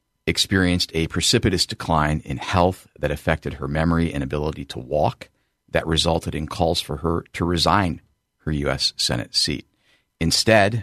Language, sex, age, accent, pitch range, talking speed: English, male, 50-69, American, 75-90 Hz, 150 wpm